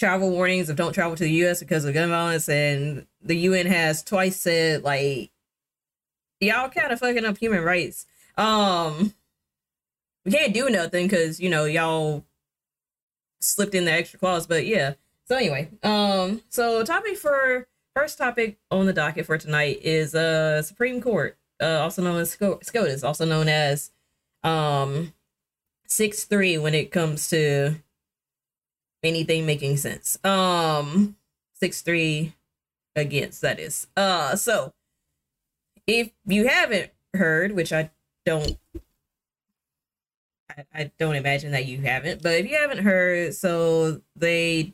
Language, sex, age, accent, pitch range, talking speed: English, female, 20-39, American, 155-195 Hz, 145 wpm